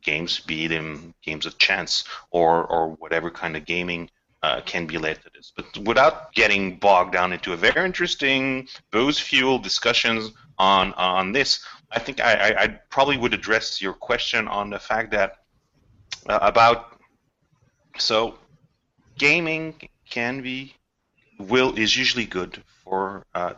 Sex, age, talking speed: male, 30-49, 150 wpm